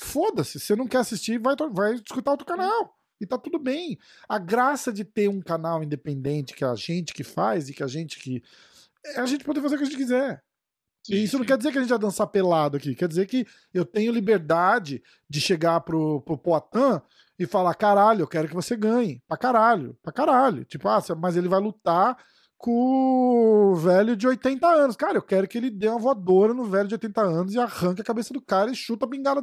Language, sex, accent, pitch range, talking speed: Portuguese, male, Brazilian, 165-255 Hz, 225 wpm